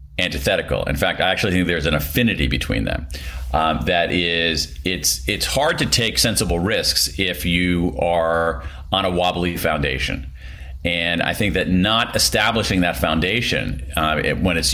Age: 40-59